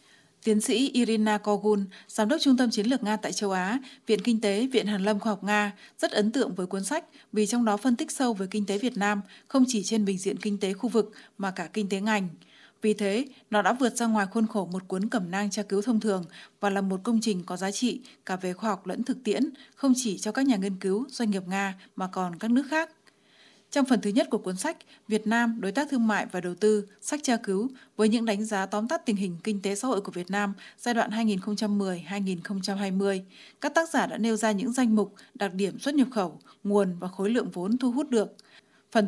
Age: 20-39